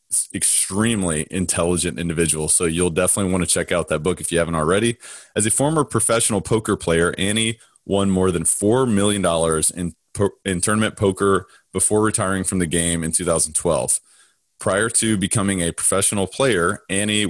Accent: American